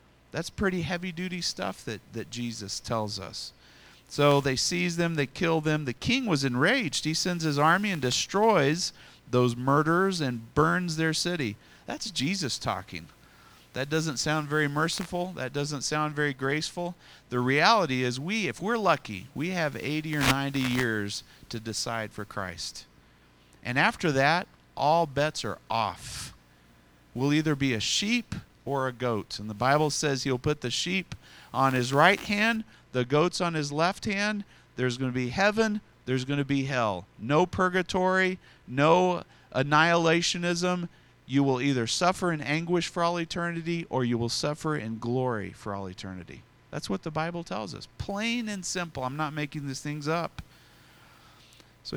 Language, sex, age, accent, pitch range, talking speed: English, male, 40-59, American, 125-175 Hz, 165 wpm